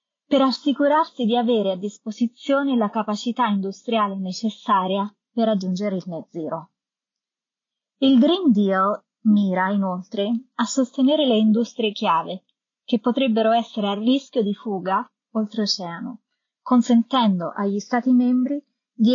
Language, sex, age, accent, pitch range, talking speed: Italian, female, 30-49, native, 205-255 Hz, 120 wpm